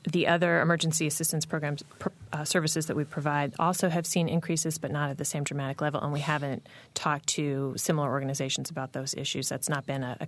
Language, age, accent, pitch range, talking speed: English, 30-49, American, 145-160 Hz, 210 wpm